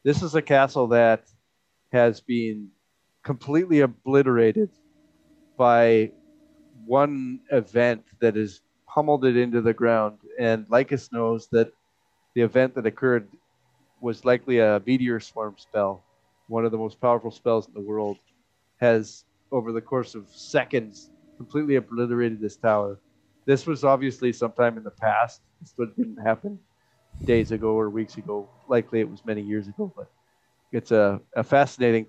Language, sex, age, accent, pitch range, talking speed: English, male, 40-59, American, 110-125 Hz, 145 wpm